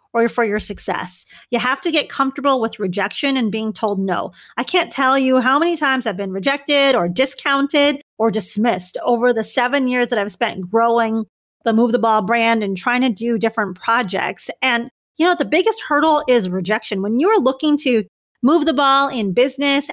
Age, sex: 30-49, female